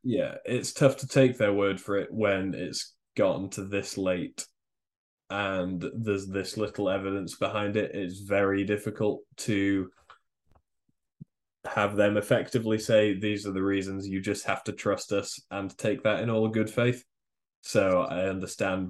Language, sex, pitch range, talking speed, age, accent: English, male, 90-105 Hz, 160 wpm, 10-29, British